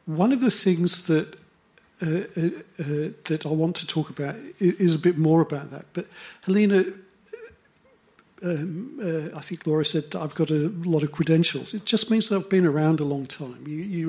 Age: 50-69